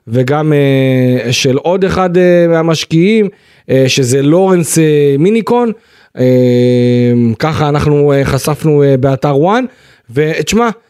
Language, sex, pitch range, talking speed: Hebrew, male, 135-165 Hz, 75 wpm